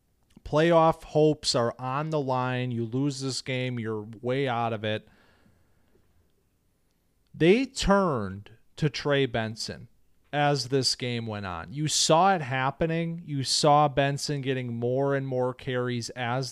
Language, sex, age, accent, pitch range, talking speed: English, male, 30-49, American, 115-150 Hz, 140 wpm